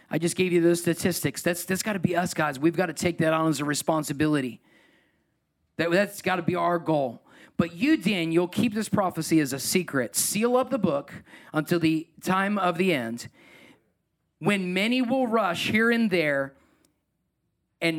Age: 40-59